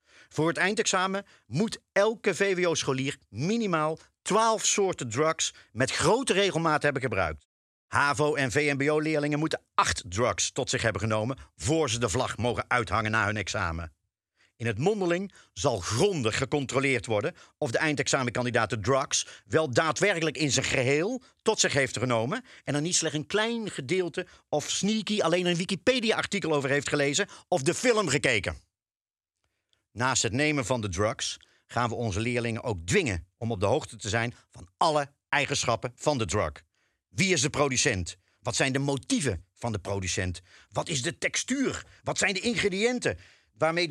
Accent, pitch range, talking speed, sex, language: Dutch, 110-165 Hz, 160 wpm, male, Dutch